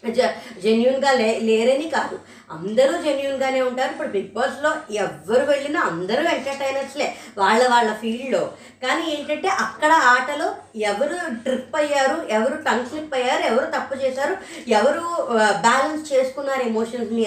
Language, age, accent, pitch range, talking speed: Telugu, 20-39, native, 235-280 Hz, 120 wpm